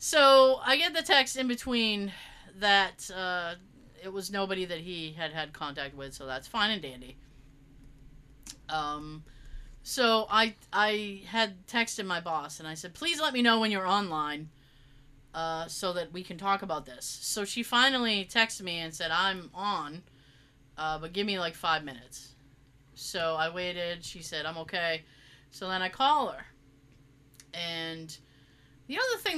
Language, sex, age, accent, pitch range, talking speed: English, female, 30-49, American, 140-220 Hz, 165 wpm